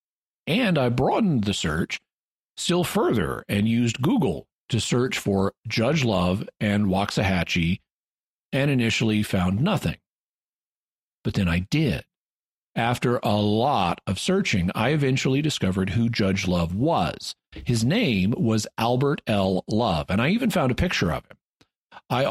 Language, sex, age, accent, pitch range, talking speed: English, male, 50-69, American, 100-130 Hz, 140 wpm